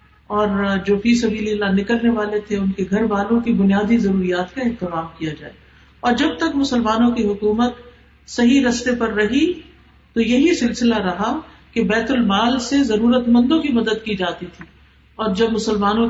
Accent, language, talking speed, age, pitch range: Indian, English, 175 wpm, 50-69, 195-240 Hz